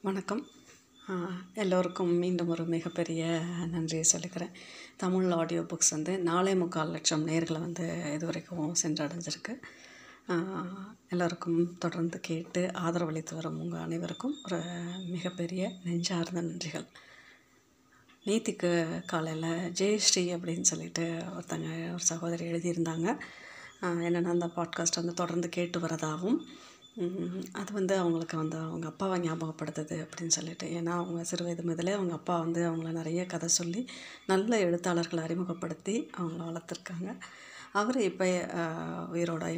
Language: Tamil